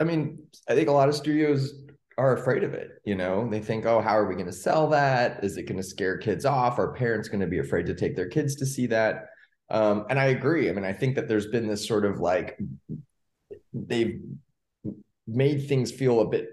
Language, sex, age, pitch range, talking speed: English, male, 20-39, 105-140 Hz, 235 wpm